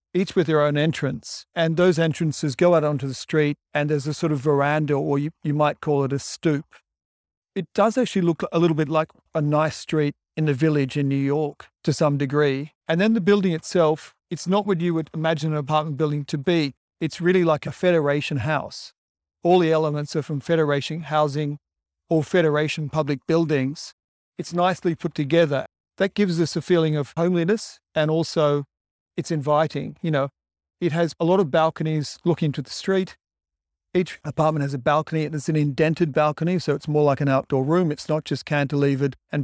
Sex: male